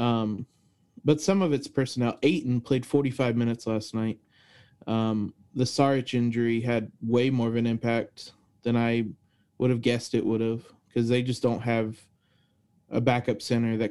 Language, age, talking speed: English, 20-39, 170 wpm